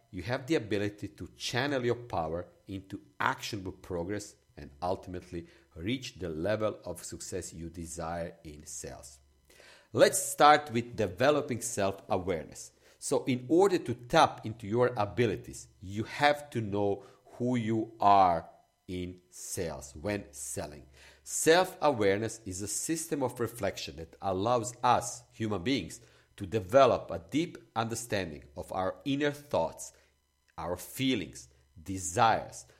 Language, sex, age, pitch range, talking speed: English, male, 50-69, 90-120 Hz, 125 wpm